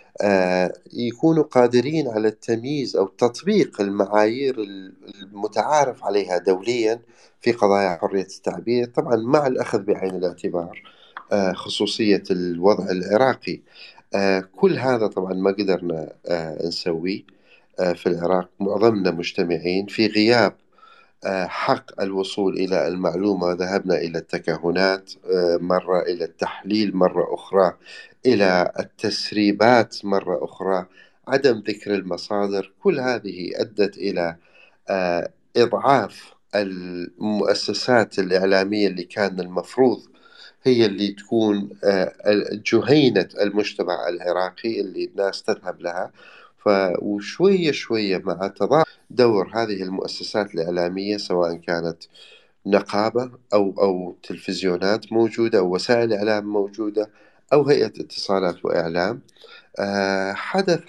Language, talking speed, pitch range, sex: Arabic, 95 wpm, 95-115 Hz, male